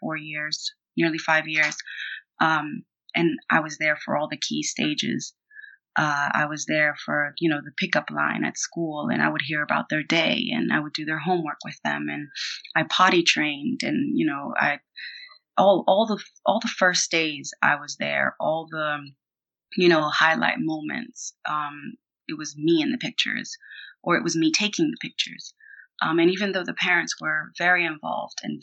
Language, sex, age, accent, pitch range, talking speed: English, female, 20-39, American, 150-210 Hz, 190 wpm